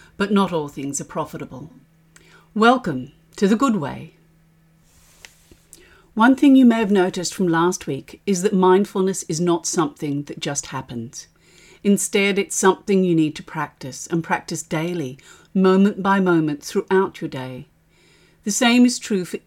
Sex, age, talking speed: female, 50-69, 155 wpm